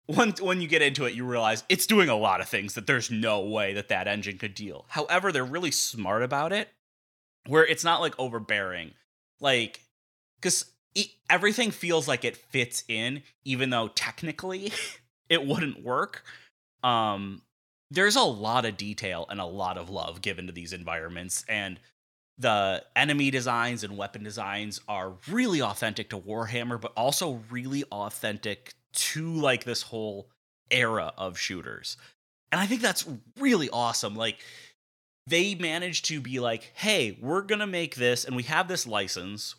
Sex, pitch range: male, 100-160 Hz